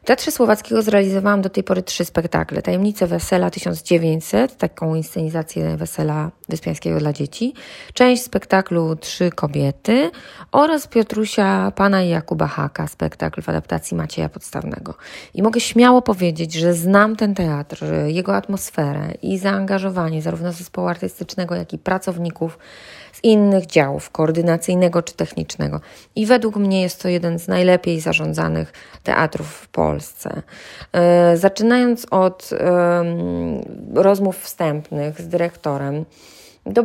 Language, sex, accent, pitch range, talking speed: Polish, female, native, 160-200 Hz, 120 wpm